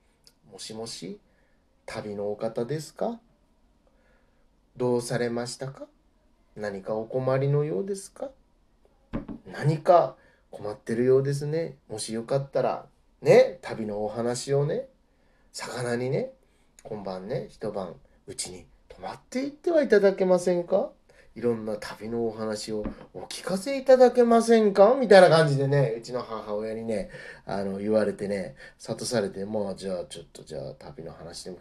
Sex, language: male, Japanese